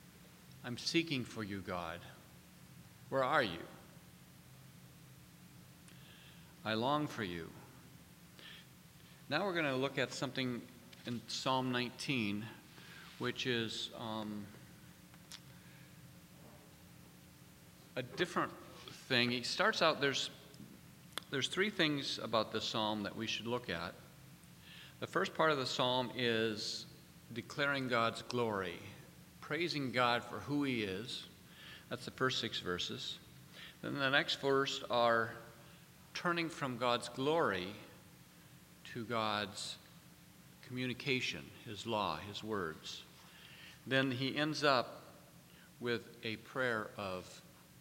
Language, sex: English, male